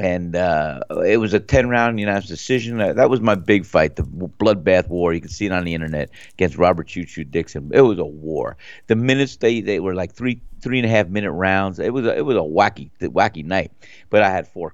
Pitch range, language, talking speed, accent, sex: 90-110 Hz, English, 250 wpm, American, male